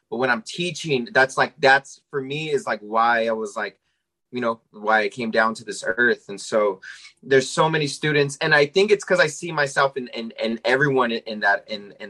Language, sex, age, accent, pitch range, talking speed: English, male, 20-39, American, 115-145 Hz, 230 wpm